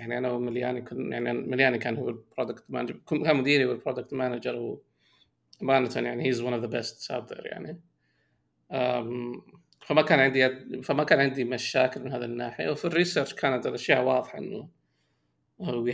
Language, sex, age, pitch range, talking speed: Arabic, male, 30-49, 120-150 Hz, 155 wpm